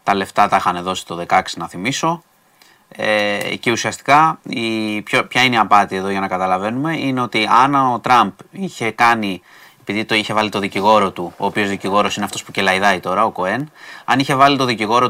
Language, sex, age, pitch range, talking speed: Greek, male, 30-49, 95-145 Hz, 190 wpm